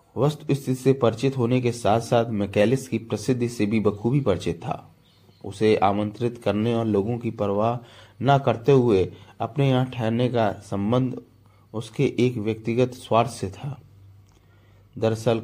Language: Hindi